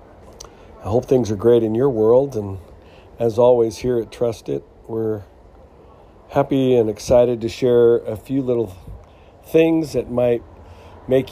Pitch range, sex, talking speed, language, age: 105-125 Hz, male, 150 wpm, English, 50-69